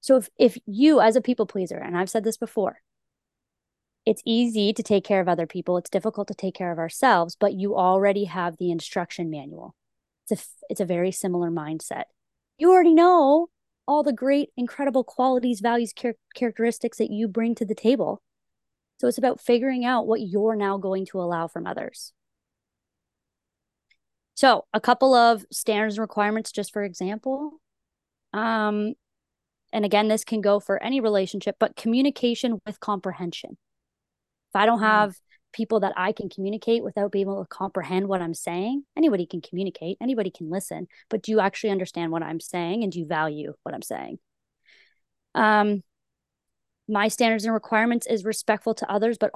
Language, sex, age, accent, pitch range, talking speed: English, female, 20-39, American, 185-230 Hz, 170 wpm